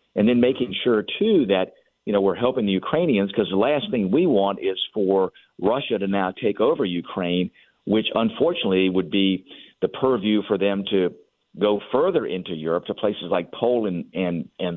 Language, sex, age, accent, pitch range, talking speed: English, male, 50-69, American, 95-120 Hz, 185 wpm